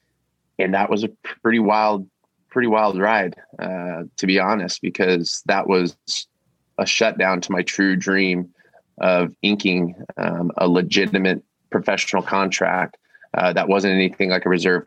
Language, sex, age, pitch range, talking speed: English, male, 20-39, 90-105 Hz, 145 wpm